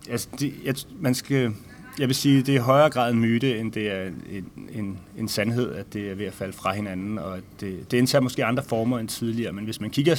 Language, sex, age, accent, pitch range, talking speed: Danish, male, 30-49, native, 100-125 Hz, 255 wpm